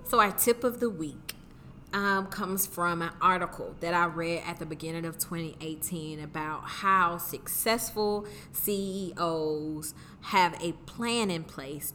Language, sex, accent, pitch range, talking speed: English, female, American, 160-195 Hz, 140 wpm